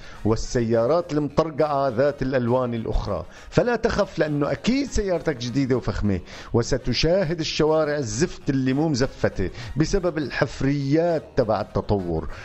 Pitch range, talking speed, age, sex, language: 105-145 Hz, 105 wpm, 50-69, male, Arabic